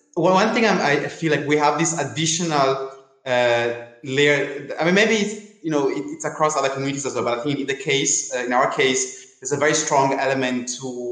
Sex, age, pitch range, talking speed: male, 20-39, 120-150 Hz, 225 wpm